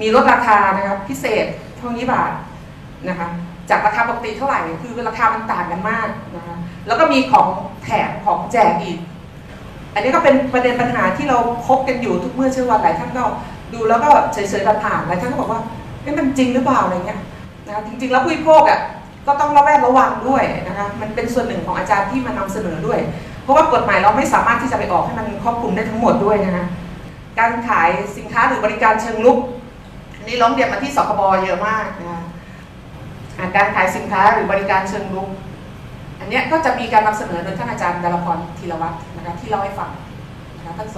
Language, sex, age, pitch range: Thai, female, 30-49, 175-240 Hz